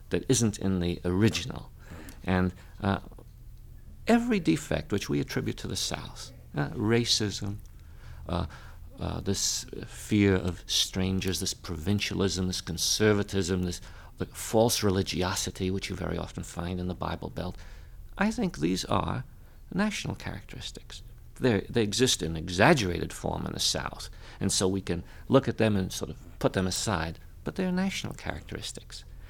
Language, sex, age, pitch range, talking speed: English, male, 50-69, 90-125 Hz, 150 wpm